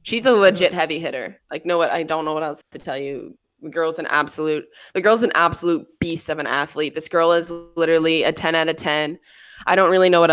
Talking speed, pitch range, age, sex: 245 wpm, 155-185 Hz, 20-39, female